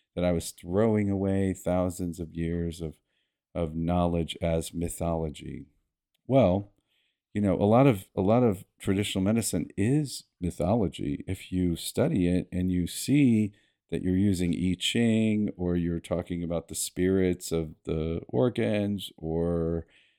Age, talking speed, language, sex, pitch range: 50-69, 145 wpm, English, male, 85-100 Hz